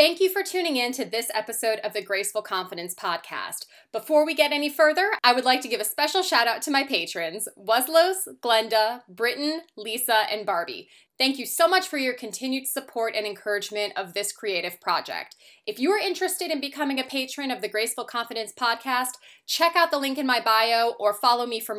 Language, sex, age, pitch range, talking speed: English, female, 20-39, 205-275 Hz, 205 wpm